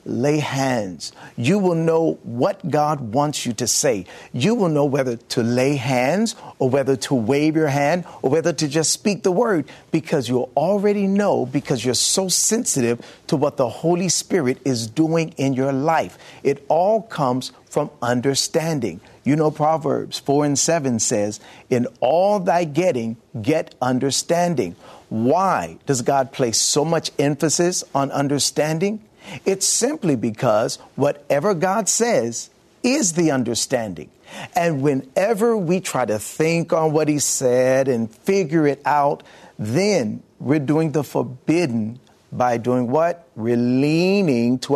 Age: 40-59